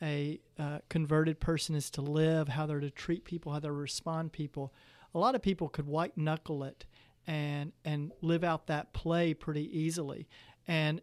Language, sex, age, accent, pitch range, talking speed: English, male, 40-59, American, 150-180 Hz, 180 wpm